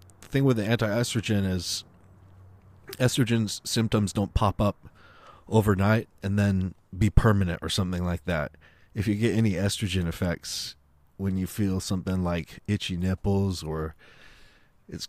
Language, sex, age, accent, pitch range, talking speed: English, male, 30-49, American, 90-105 Hz, 135 wpm